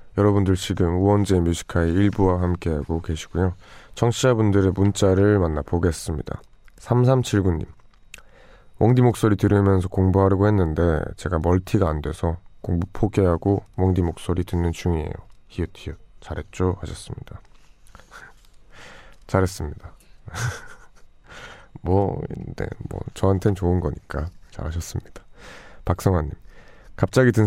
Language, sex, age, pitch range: Korean, male, 20-39, 85-105 Hz